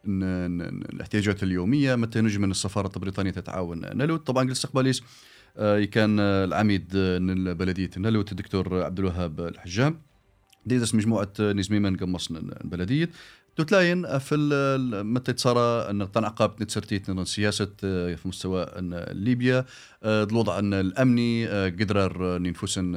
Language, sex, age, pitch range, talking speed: English, male, 30-49, 95-125 Hz, 105 wpm